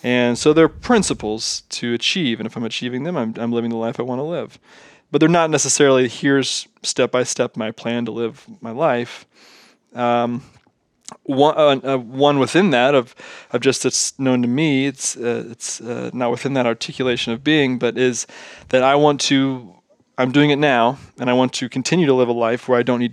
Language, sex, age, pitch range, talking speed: English, male, 20-39, 115-130 Hz, 200 wpm